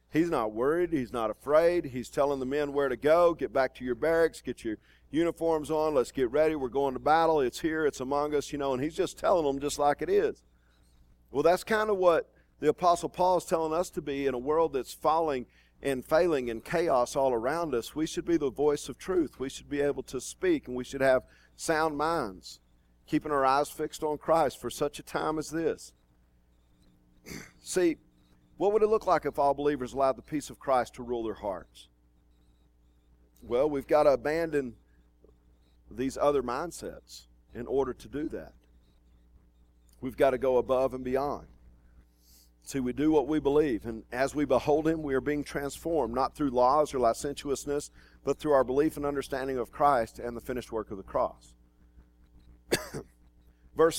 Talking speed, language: 195 wpm, English